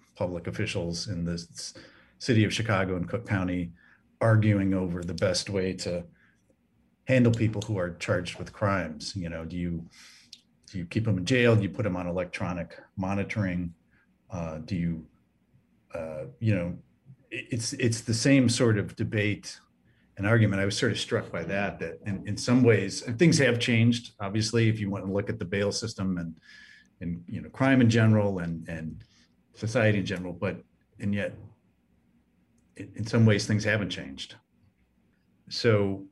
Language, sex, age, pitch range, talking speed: English, male, 40-59, 90-115 Hz, 175 wpm